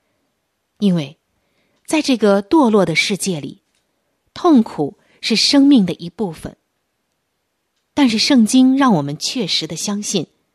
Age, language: 30-49, Chinese